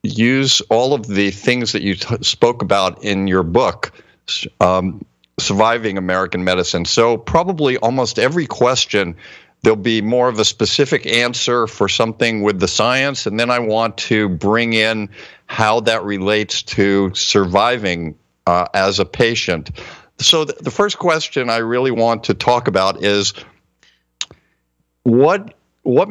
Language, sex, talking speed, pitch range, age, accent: English, male, 145 wpm, 100-125 Hz, 50-69, American